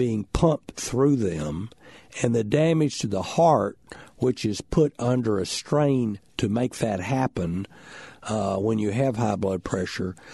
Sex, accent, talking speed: male, American, 155 wpm